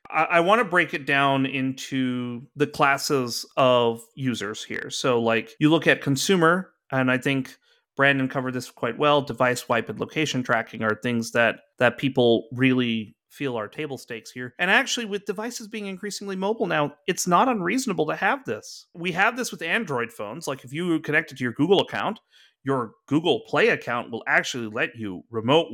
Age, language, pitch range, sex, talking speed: 30-49, English, 130-175 Hz, male, 185 wpm